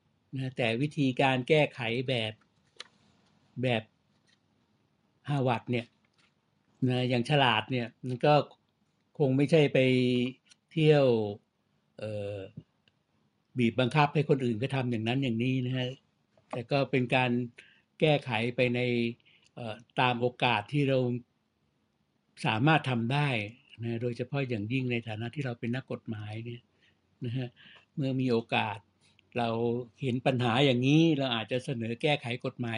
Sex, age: male, 60-79